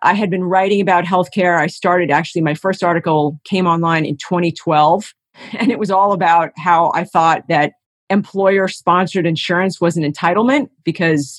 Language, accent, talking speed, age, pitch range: English, American, 185 wpm, 40-59, 170-210 Hz